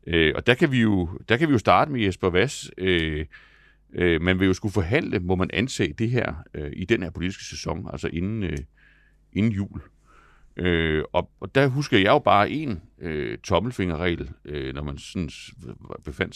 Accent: native